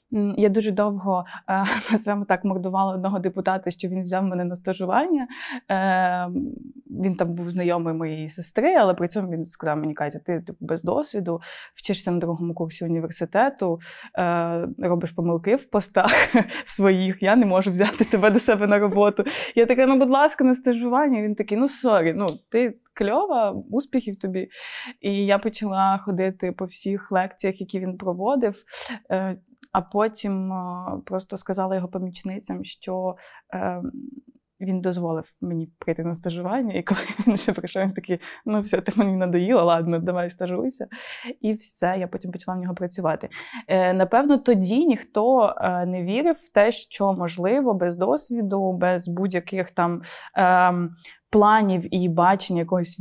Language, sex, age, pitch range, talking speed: Ukrainian, female, 20-39, 175-215 Hz, 145 wpm